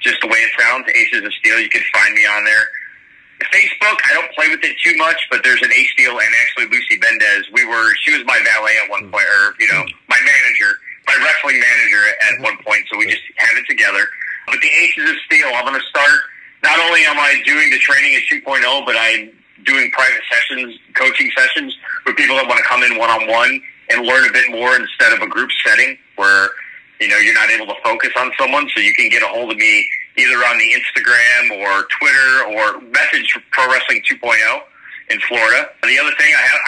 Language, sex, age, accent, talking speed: English, male, 30-49, American, 220 wpm